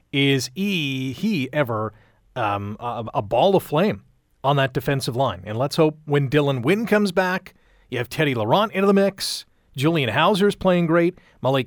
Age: 40-59